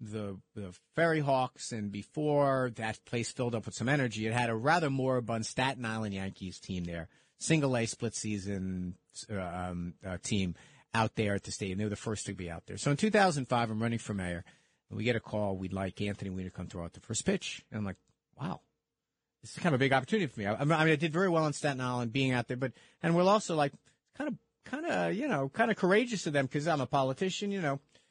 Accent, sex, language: American, male, English